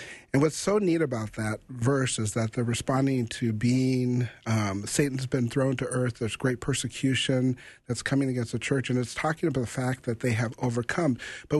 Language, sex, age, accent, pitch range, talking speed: English, male, 40-59, American, 115-135 Hz, 195 wpm